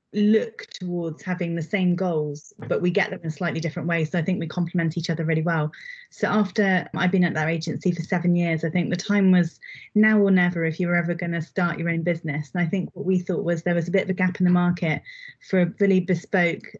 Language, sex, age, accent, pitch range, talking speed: English, female, 20-39, British, 170-190 Hz, 265 wpm